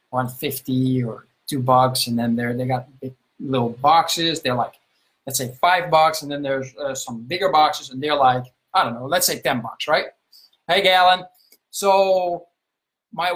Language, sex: English, male